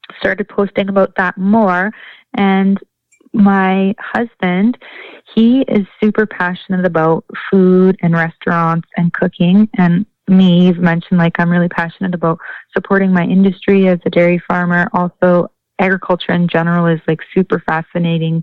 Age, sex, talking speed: 20-39, female, 135 wpm